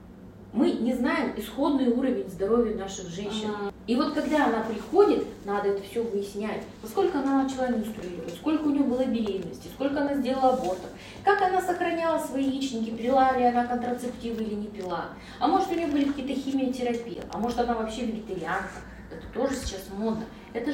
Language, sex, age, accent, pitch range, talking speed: Russian, female, 20-39, native, 205-270 Hz, 170 wpm